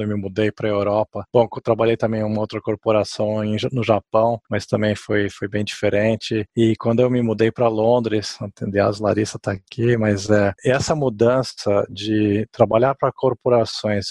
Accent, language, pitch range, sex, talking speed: Brazilian, Portuguese, 110-135 Hz, male, 170 wpm